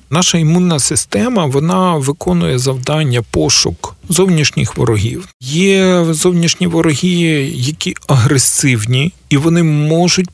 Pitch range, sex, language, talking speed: 125-165 Hz, male, Ukrainian, 100 wpm